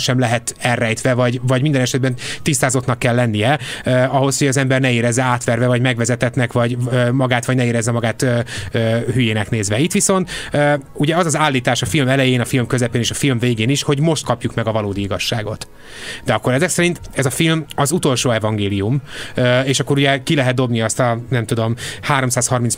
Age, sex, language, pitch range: 30-49, male, Hungarian, 115-140 Hz